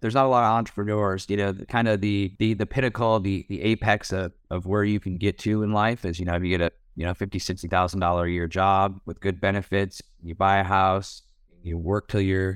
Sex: male